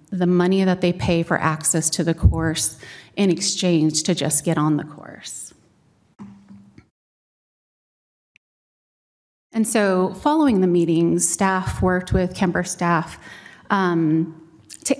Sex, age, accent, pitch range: female, 30-49, American, 175-215 Hz